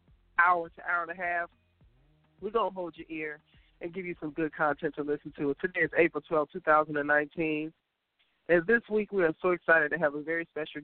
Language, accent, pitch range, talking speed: English, American, 150-180 Hz, 210 wpm